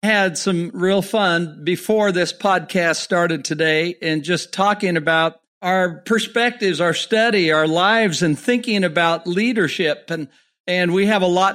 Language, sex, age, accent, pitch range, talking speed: English, male, 50-69, American, 175-215 Hz, 150 wpm